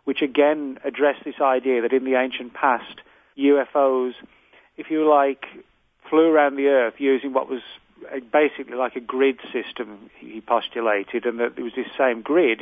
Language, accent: English, British